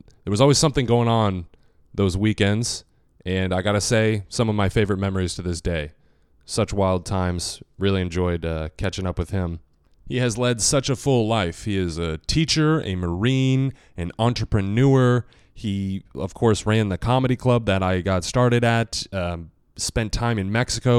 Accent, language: American, English